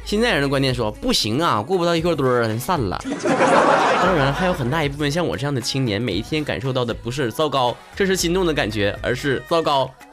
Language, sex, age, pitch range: Chinese, male, 20-39, 125-190 Hz